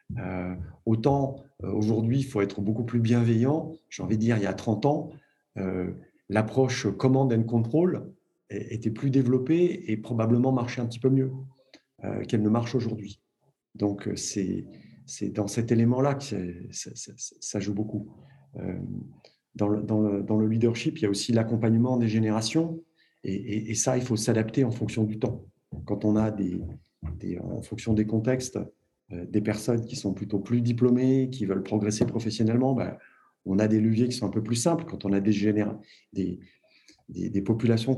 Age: 40-59